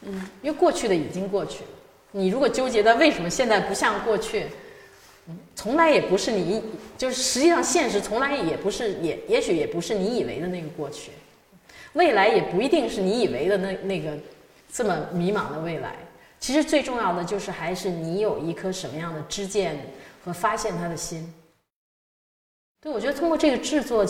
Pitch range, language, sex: 160-230 Hz, Chinese, female